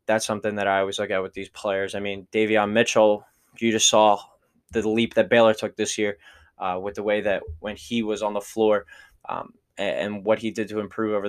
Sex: male